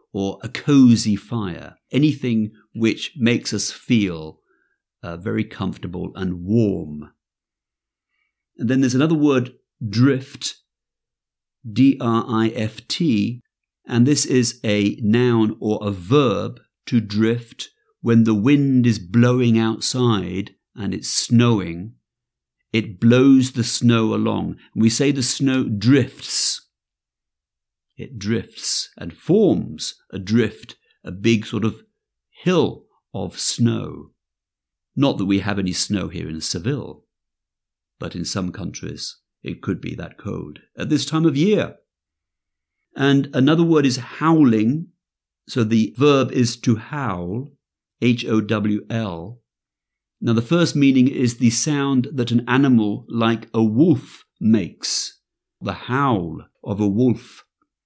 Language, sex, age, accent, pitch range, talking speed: English, male, 50-69, British, 105-130 Hz, 120 wpm